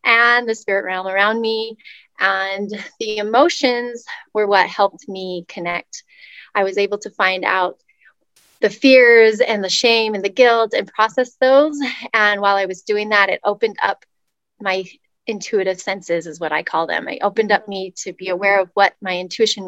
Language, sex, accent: English, female, American